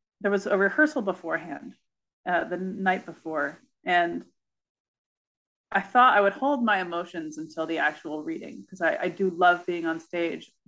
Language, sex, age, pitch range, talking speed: English, female, 30-49, 170-205 Hz, 165 wpm